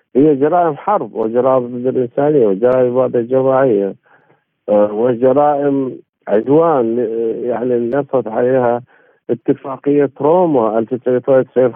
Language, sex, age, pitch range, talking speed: Arabic, male, 50-69, 120-150 Hz, 90 wpm